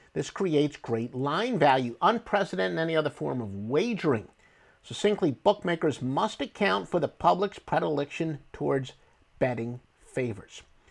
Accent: American